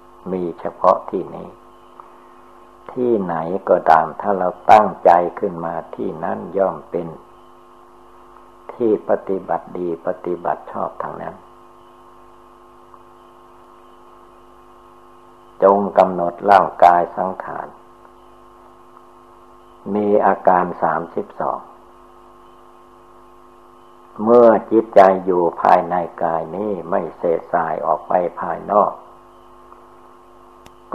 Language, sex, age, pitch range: Thai, male, 60-79, 90-120 Hz